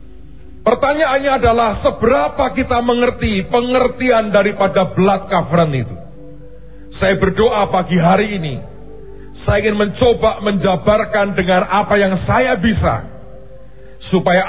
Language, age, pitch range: Indonesian, 40-59, 145-215 Hz